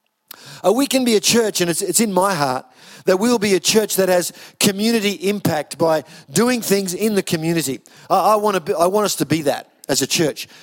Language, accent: English, Australian